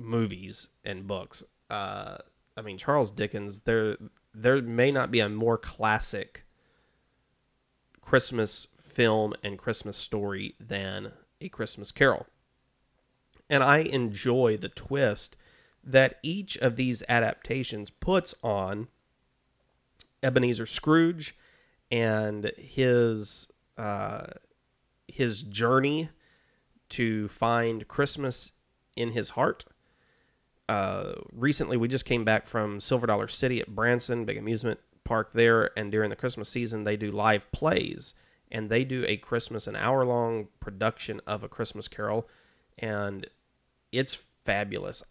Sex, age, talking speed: male, 30-49, 120 wpm